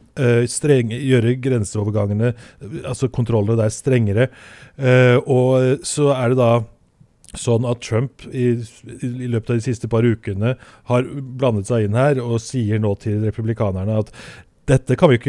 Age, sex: 30-49, male